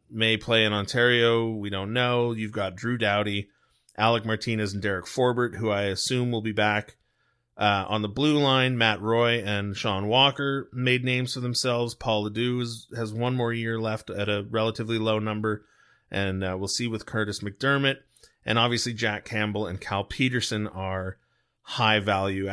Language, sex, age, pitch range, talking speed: English, male, 30-49, 100-120 Hz, 170 wpm